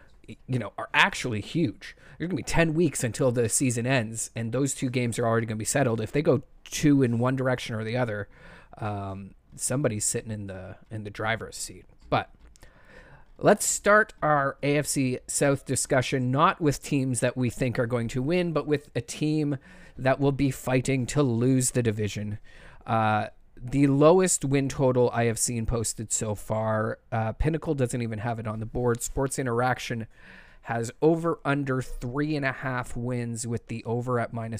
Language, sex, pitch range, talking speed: English, male, 115-140 Hz, 185 wpm